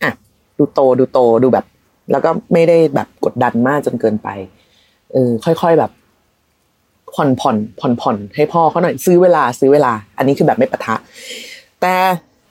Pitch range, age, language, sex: 130-205 Hz, 20-39, Thai, female